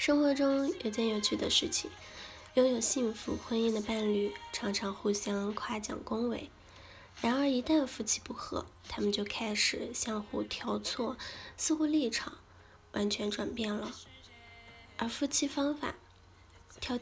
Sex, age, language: female, 10-29, Chinese